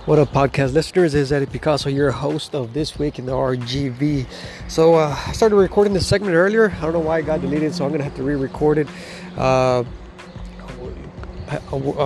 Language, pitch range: English, 125-145 Hz